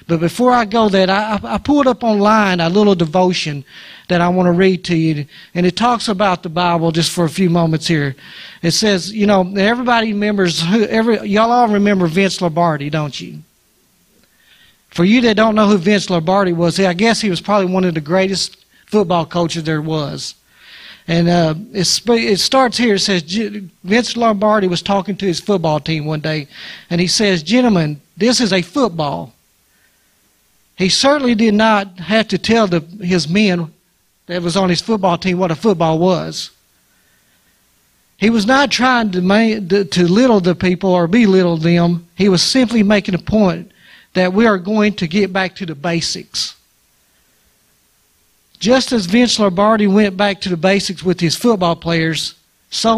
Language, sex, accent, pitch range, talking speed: English, male, American, 170-210 Hz, 175 wpm